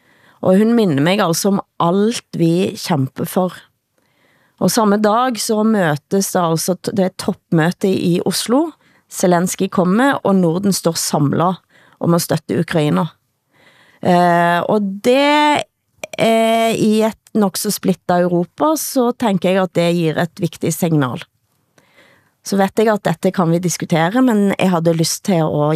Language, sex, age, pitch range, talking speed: Danish, female, 30-49, 170-225 Hz, 150 wpm